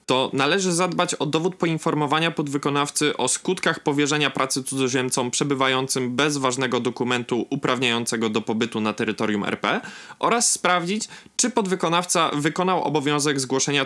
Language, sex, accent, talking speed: Polish, male, native, 125 wpm